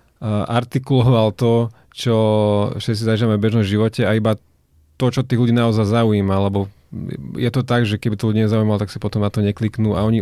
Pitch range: 110-125 Hz